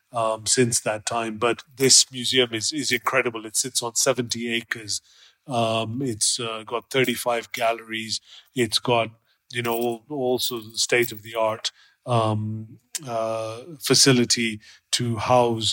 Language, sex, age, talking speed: English, male, 30-49, 120 wpm